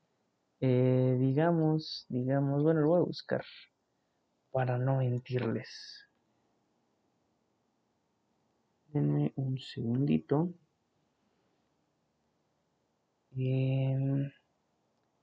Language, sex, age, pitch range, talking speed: Spanish, male, 30-49, 120-140 Hz, 55 wpm